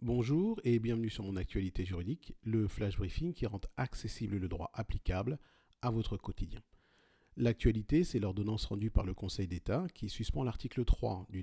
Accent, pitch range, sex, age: French, 100-130 Hz, male, 40-59